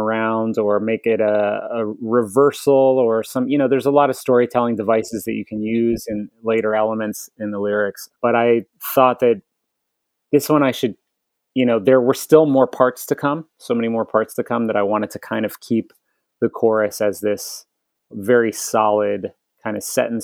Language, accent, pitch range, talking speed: English, American, 105-120 Hz, 200 wpm